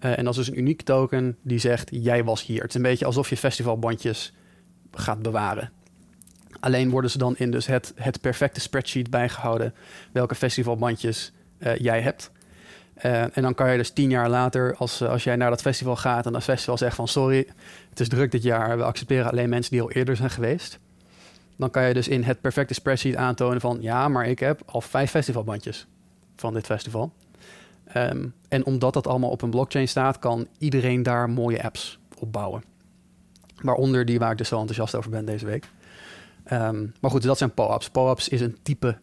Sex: male